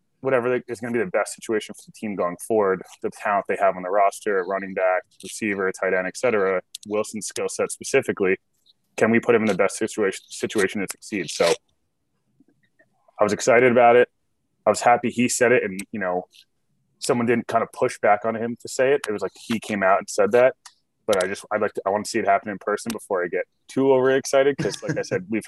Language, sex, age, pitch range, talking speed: English, male, 20-39, 95-125 Hz, 240 wpm